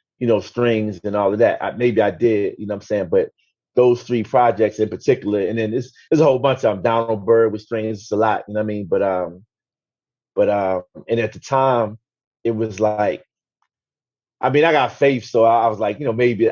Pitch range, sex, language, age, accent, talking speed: 105-120 Hz, male, English, 30-49, American, 245 wpm